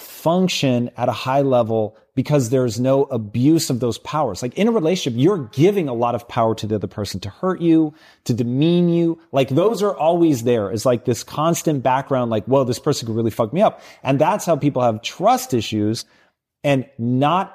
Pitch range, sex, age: 115-145 Hz, male, 30-49